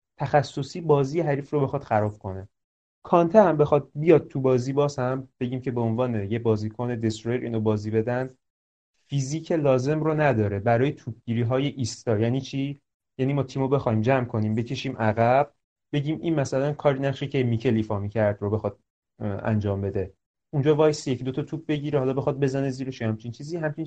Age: 30-49